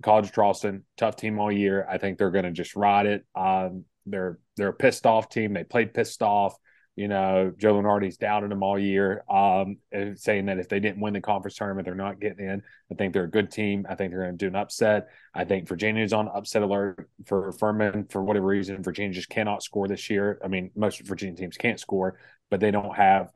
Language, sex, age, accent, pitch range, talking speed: English, male, 30-49, American, 95-105 Hz, 225 wpm